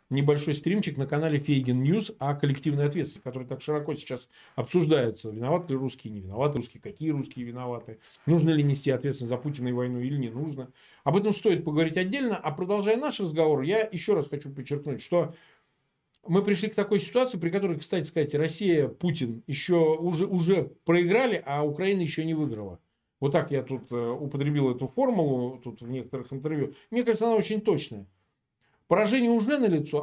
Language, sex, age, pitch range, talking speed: Russian, male, 40-59, 135-175 Hz, 175 wpm